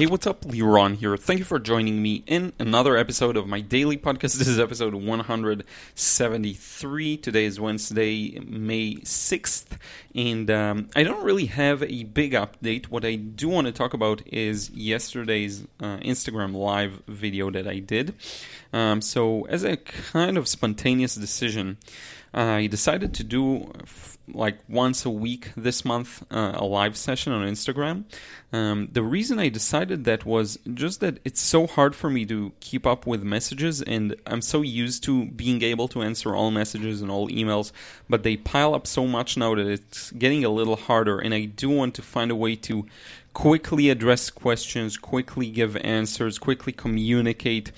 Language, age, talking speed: English, 30-49, 175 wpm